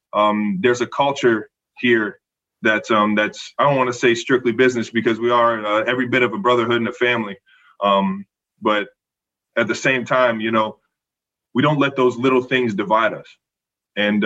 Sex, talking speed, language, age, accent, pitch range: male, 185 wpm, English, 20-39, American, 105-125 Hz